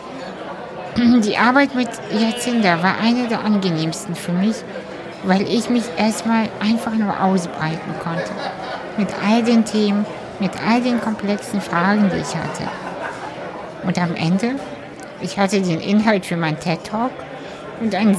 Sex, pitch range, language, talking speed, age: female, 180-225 Hz, German, 140 wpm, 60-79